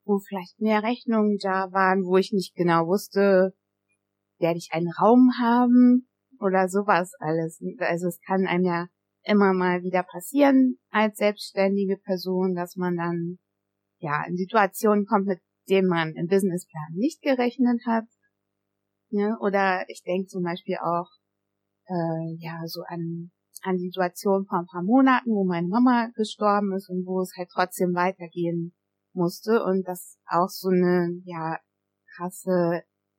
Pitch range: 165-200 Hz